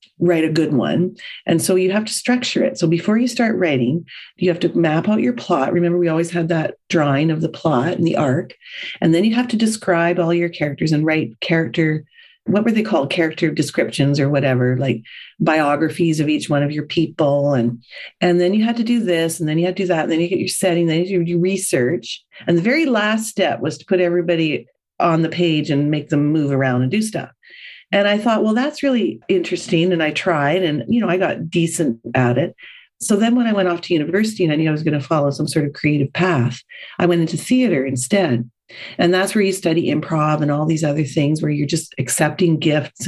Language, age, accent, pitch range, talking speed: English, 40-59, American, 155-200 Hz, 235 wpm